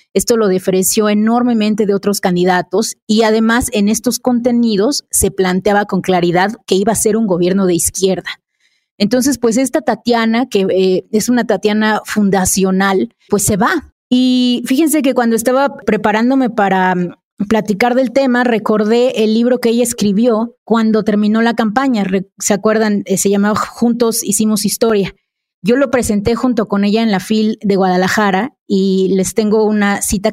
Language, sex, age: Spanish, female, 30-49